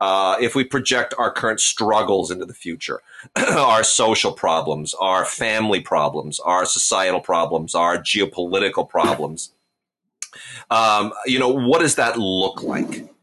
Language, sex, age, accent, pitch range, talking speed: English, male, 30-49, American, 90-120 Hz, 135 wpm